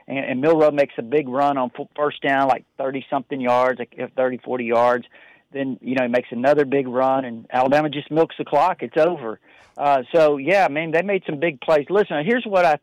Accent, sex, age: American, male, 50-69